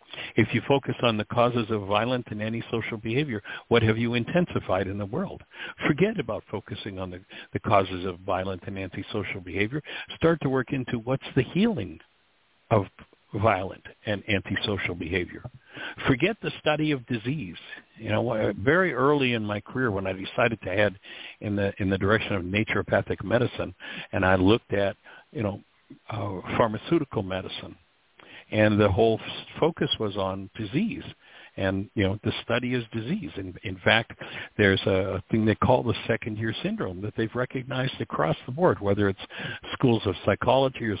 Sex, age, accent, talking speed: male, 60-79, American, 165 wpm